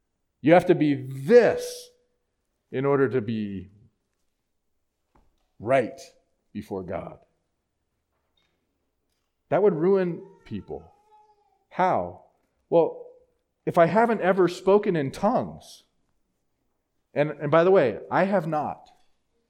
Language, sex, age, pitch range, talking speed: English, male, 40-59, 125-185 Hz, 100 wpm